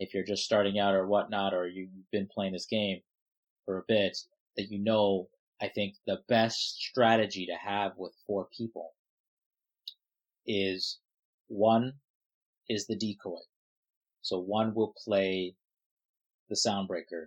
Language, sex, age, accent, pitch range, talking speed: English, male, 30-49, American, 95-115 Hz, 140 wpm